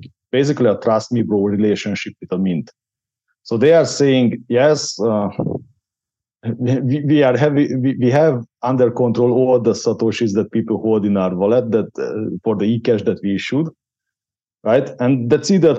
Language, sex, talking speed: English, male, 170 wpm